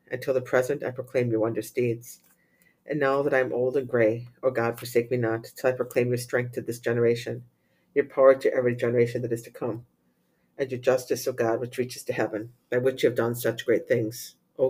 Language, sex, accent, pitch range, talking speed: English, female, American, 115-130 Hz, 230 wpm